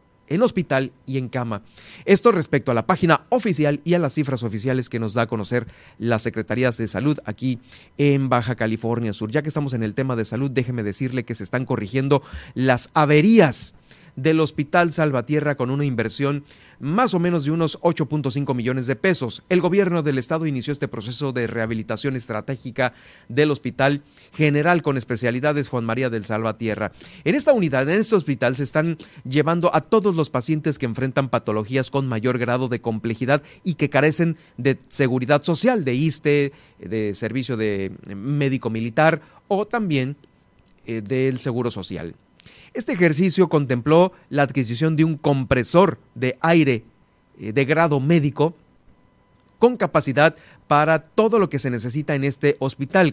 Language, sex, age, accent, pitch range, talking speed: Spanish, male, 40-59, Mexican, 120-155 Hz, 165 wpm